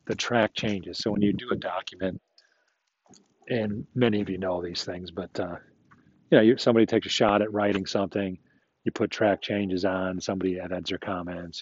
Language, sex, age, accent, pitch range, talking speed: English, male, 40-59, American, 95-120 Hz, 185 wpm